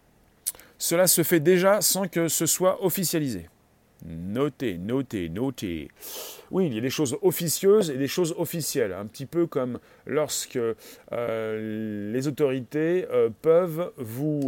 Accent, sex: French, male